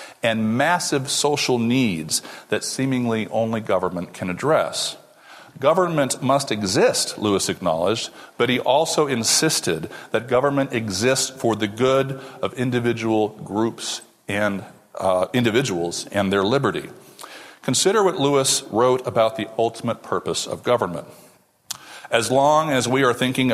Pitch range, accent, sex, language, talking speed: 110-135 Hz, American, male, English, 125 wpm